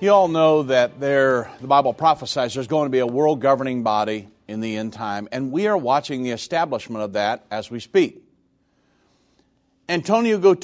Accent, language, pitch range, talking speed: American, English, 135-190 Hz, 170 wpm